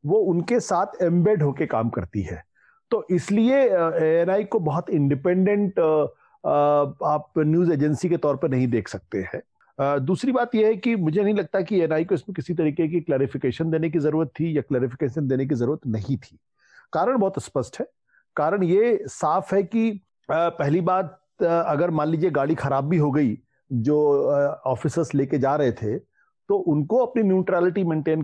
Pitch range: 140-195 Hz